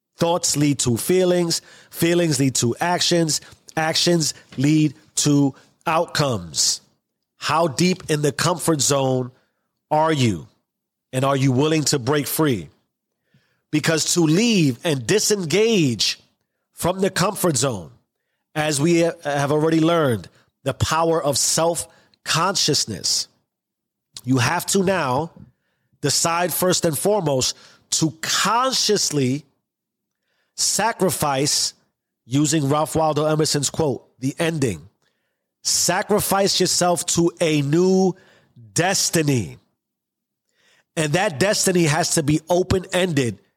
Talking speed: 105 wpm